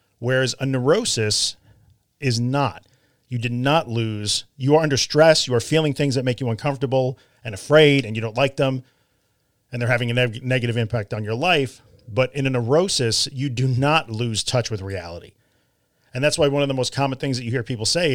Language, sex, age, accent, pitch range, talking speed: English, male, 40-59, American, 110-135 Hz, 205 wpm